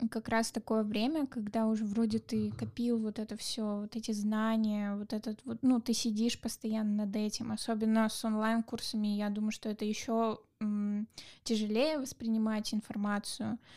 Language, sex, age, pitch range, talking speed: Russian, female, 10-29, 215-235 Hz, 155 wpm